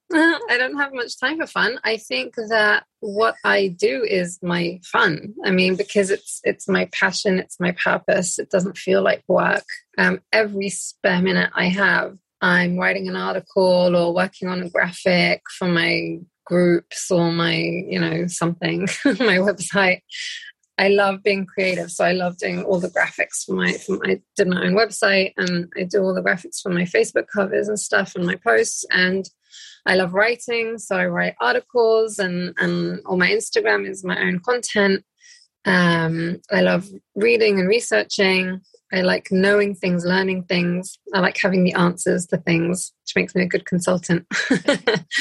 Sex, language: female, English